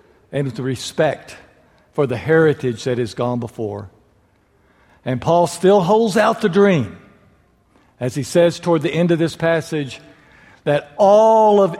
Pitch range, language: 130-190 Hz, English